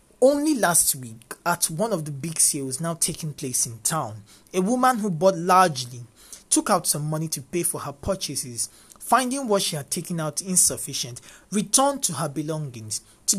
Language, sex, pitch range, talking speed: English, male, 140-185 Hz, 180 wpm